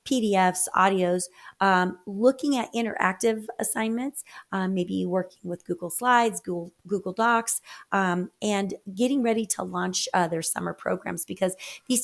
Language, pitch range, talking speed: English, 180-225 Hz, 140 wpm